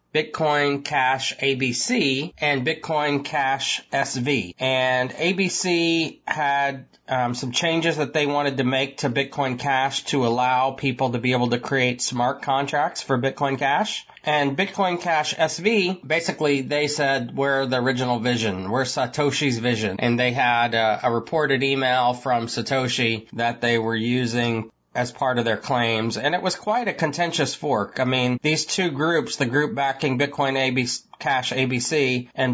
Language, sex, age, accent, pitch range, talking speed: English, male, 30-49, American, 125-145 Hz, 155 wpm